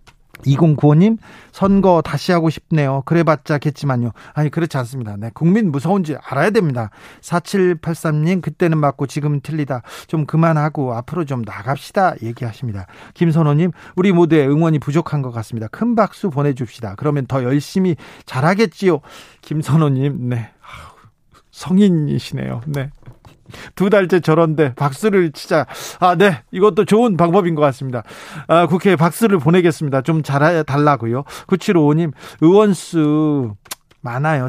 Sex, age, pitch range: male, 40-59, 140-190 Hz